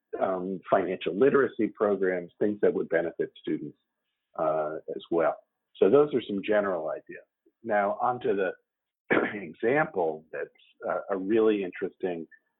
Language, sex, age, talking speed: English, male, 50-69, 130 wpm